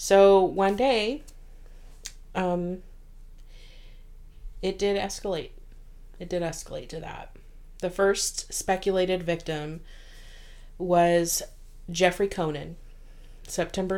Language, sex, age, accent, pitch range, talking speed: English, female, 30-49, American, 150-190 Hz, 85 wpm